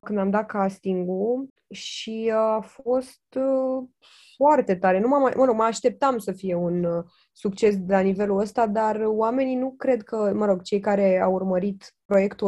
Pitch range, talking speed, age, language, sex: 185-225 Hz, 150 wpm, 20-39, Romanian, female